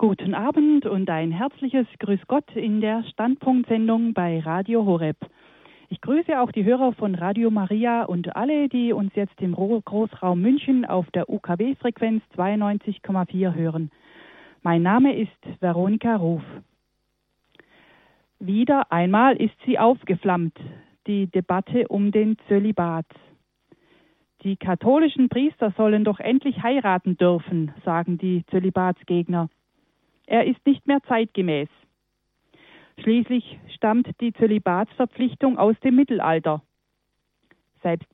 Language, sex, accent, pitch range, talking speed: German, female, German, 180-235 Hz, 115 wpm